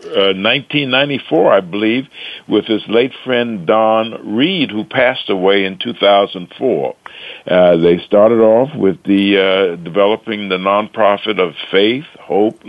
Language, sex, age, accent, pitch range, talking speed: English, male, 60-79, American, 95-125 Hz, 130 wpm